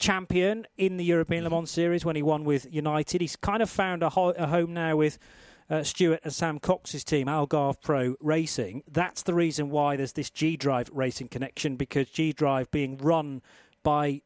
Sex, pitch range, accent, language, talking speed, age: male, 135-165 Hz, British, English, 185 wpm, 40-59